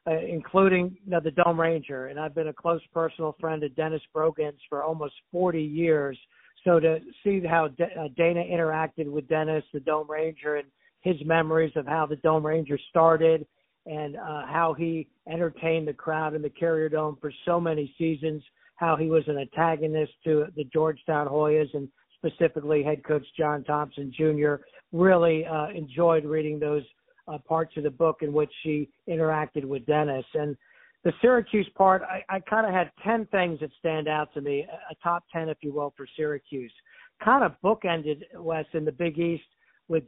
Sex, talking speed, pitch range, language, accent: male, 180 wpm, 150-170 Hz, English, American